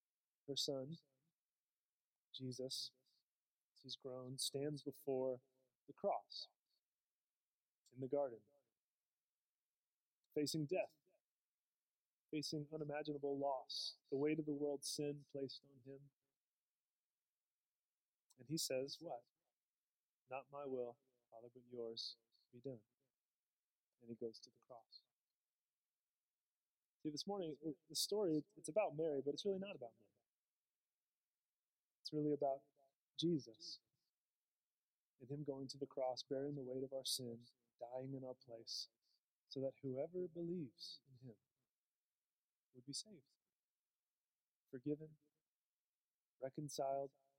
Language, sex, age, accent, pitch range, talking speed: English, male, 30-49, American, 130-150 Hz, 115 wpm